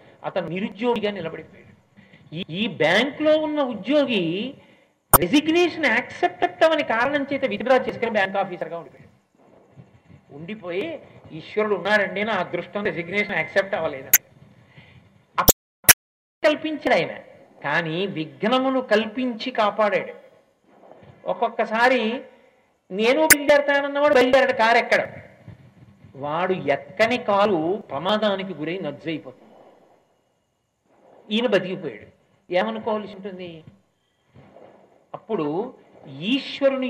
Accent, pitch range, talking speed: native, 185-260 Hz, 80 wpm